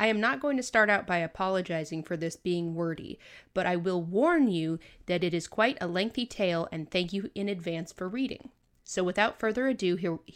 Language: English